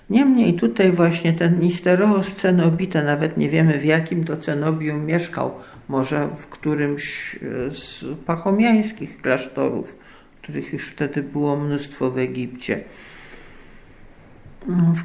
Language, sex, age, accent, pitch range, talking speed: Polish, male, 50-69, native, 155-205 Hz, 110 wpm